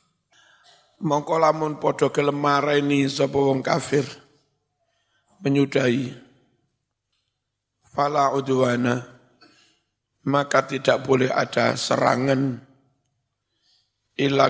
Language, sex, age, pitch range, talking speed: Indonesian, male, 60-79, 130-145 Hz, 60 wpm